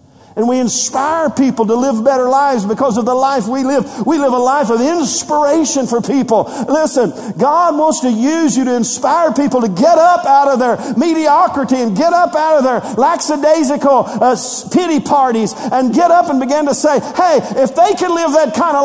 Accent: American